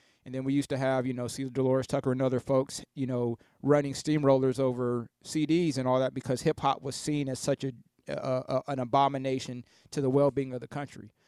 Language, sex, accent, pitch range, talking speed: English, male, American, 130-155 Hz, 220 wpm